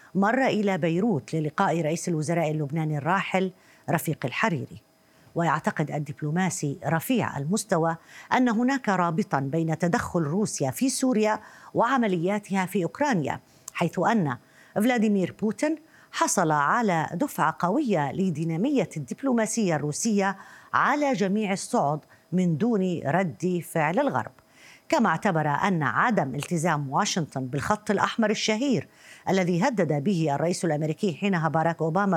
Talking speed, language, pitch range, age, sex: 115 wpm, Arabic, 155-215 Hz, 50-69, female